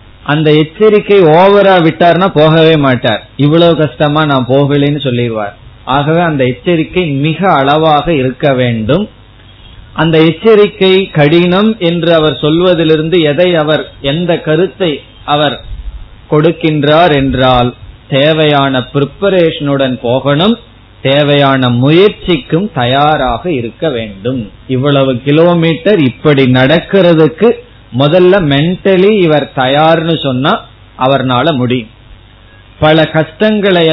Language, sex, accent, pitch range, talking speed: Tamil, male, native, 130-170 Hz, 90 wpm